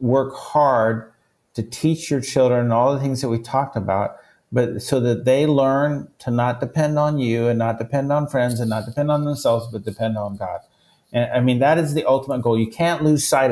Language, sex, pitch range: English, male, 115-140 Hz